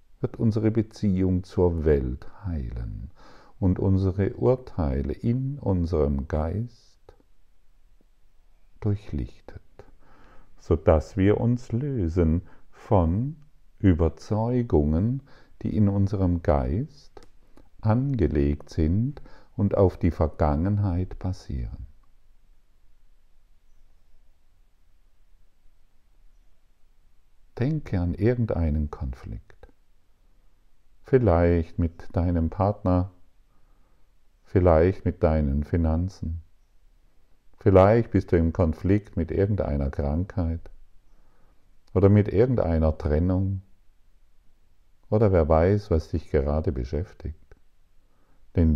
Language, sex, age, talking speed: German, male, 50-69, 75 wpm